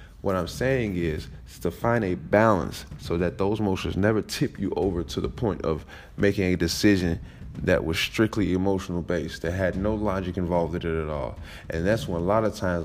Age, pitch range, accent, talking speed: 20-39, 85-100 Hz, American, 200 wpm